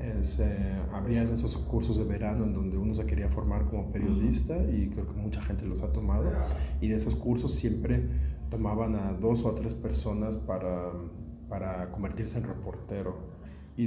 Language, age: Spanish, 40-59